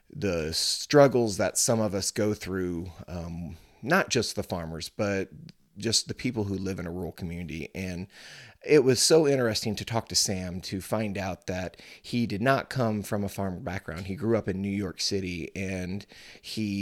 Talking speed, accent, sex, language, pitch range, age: 190 wpm, American, male, English, 90-110 Hz, 30-49